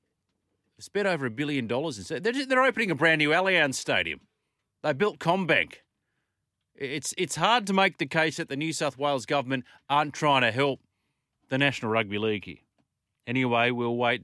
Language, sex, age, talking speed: English, male, 40-59, 175 wpm